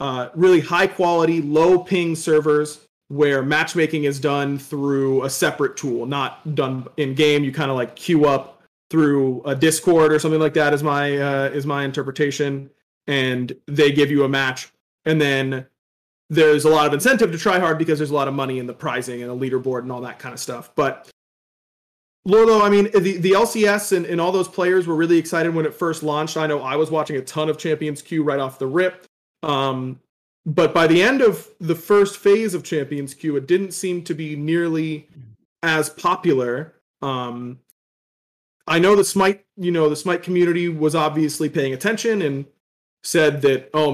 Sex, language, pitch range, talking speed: male, English, 140-170 Hz, 195 wpm